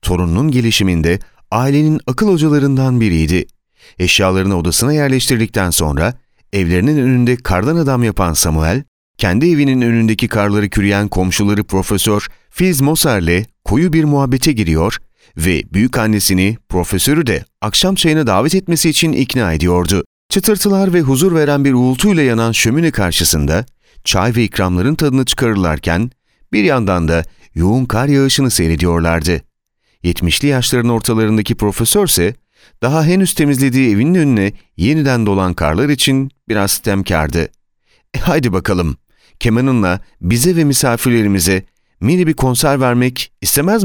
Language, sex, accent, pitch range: Turkish, male, native, 95-145 Hz